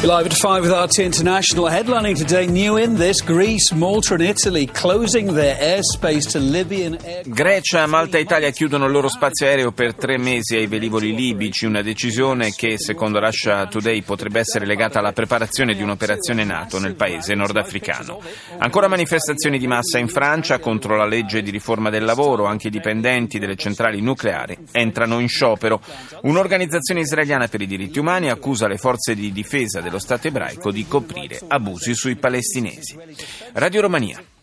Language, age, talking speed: Italian, 30-49, 135 wpm